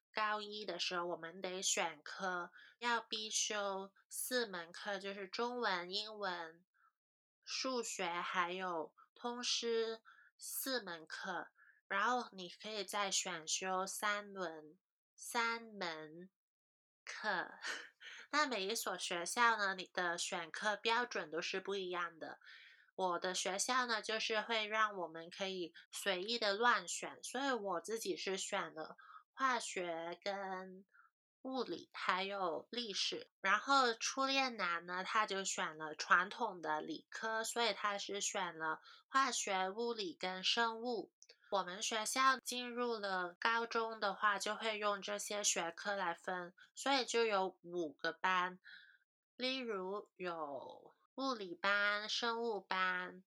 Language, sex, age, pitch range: Chinese, female, 20-39, 180-230 Hz